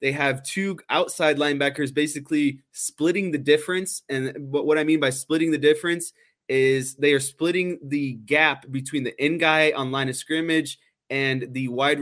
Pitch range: 135-160 Hz